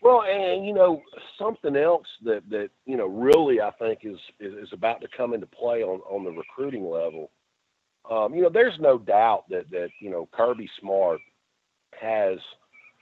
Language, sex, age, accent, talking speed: English, male, 50-69, American, 180 wpm